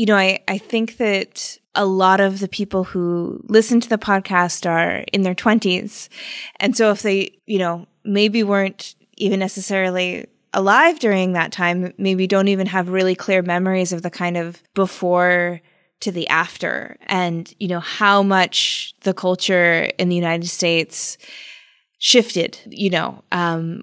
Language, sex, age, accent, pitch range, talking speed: English, female, 20-39, American, 180-210 Hz, 160 wpm